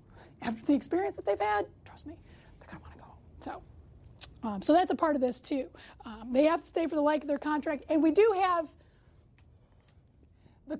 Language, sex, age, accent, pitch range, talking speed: English, female, 30-49, American, 250-330 Hz, 220 wpm